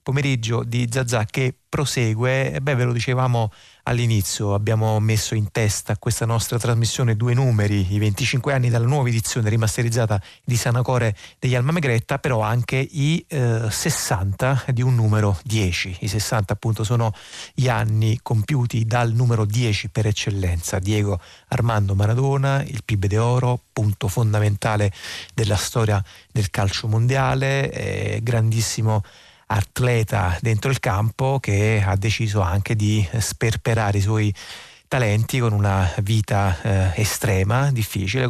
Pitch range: 105-125 Hz